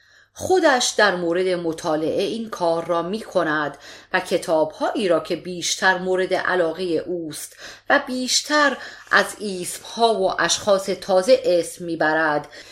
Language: Persian